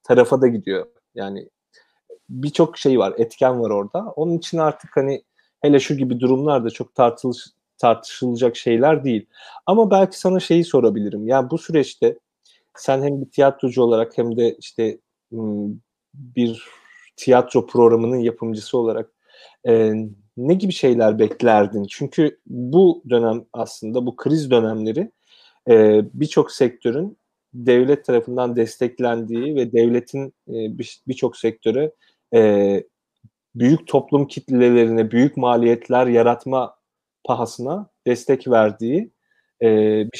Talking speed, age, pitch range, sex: 110 wpm, 40-59, 115-145 Hz, male